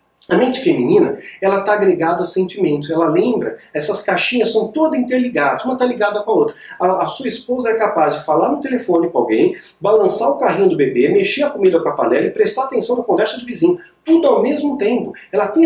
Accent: Brazilian